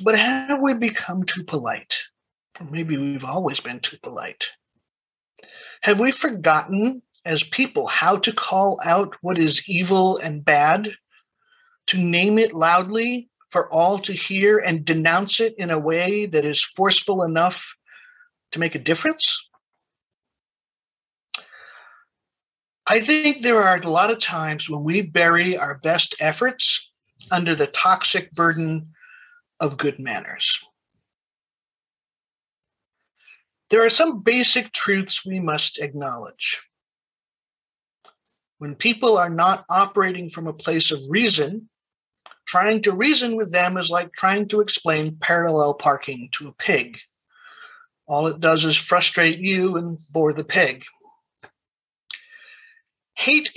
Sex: male